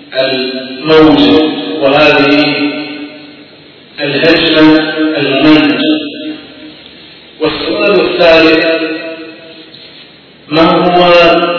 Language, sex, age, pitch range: Arabic, male, 40-59, 140-175 Hz